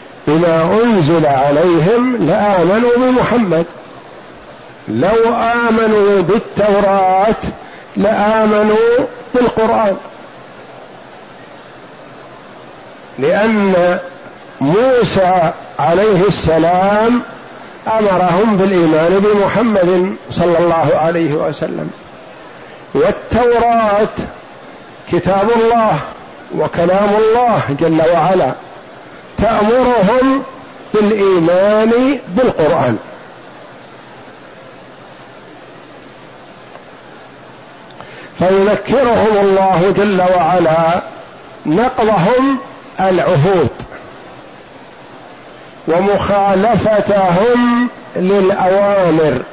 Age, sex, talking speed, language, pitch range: 50-69, male, 45 wpm, Arabic, 175-225 Hz